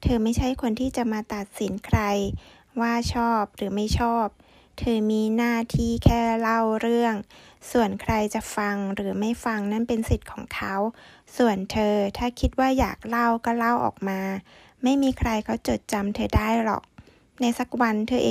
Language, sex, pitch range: Thai, female, 210-240 Hz